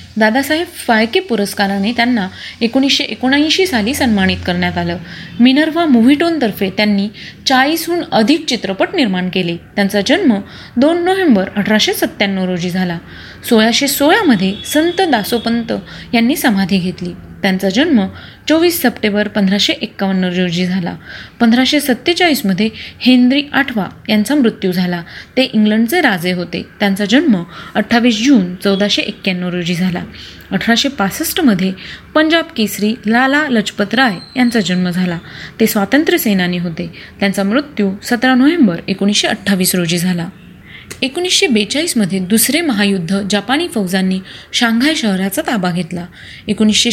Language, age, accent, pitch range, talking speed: Marathi, 20-39, native, 195-265 Hz, 115 wpm